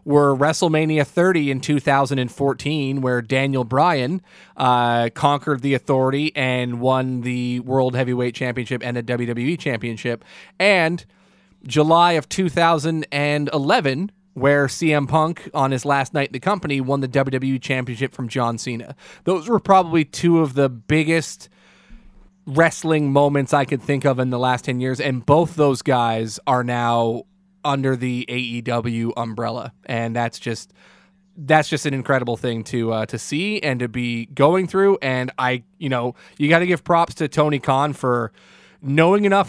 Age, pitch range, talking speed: 30-49, 125-165 Hz, 155 wpm